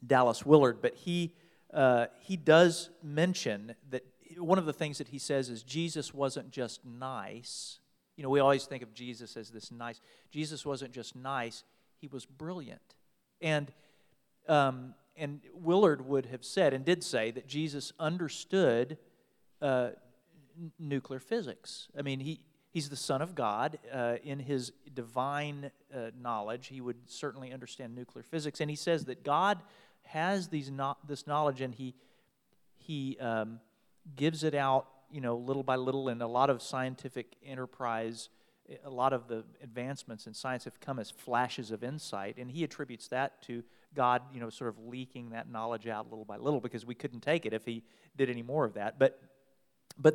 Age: 40-59